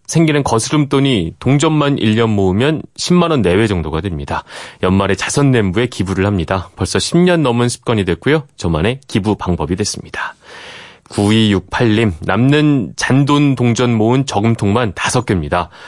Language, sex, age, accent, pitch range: Korean, male, 30-49, native, 95-145 Hz